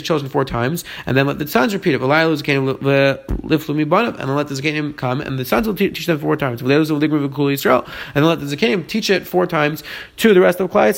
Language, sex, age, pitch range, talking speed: English, male, 30-49, 150-185 Hz, 220 wpm